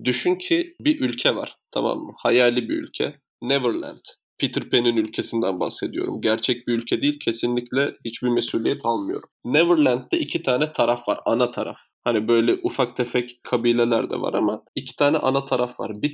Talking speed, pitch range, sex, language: 165 wpm, 120-150 Hz, male, Turkish